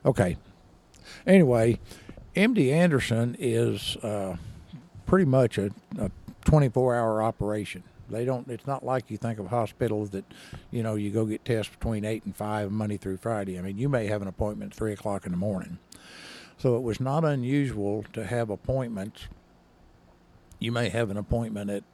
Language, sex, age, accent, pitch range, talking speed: English, male, 60-79, American, 100-125 Hz, 180 wpm